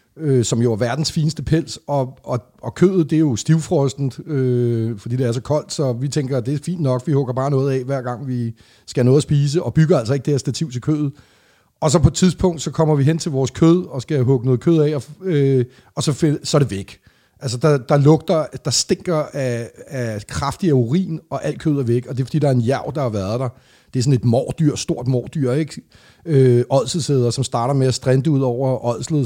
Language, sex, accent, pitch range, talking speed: Danish, male, native, 125-155 Hz, 250 wpm